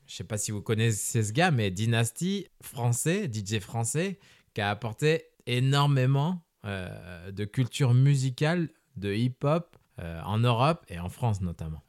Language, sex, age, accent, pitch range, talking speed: French, male, 20-39, French, 105-140 Hz, 155 wpm